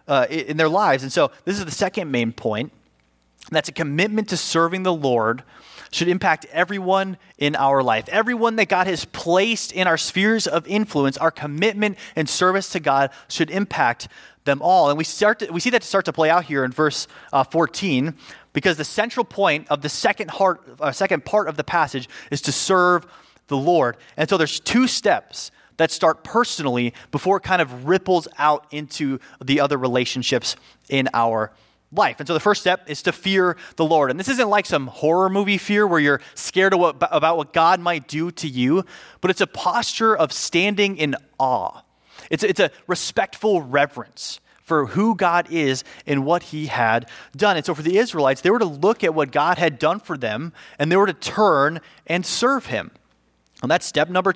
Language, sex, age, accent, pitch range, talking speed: English, male, 30-49, American, 145-195 Hz, 200 wpm